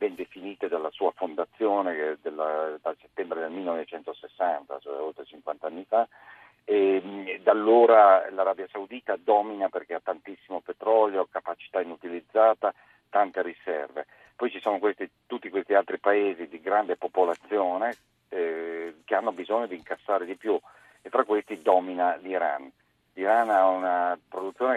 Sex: male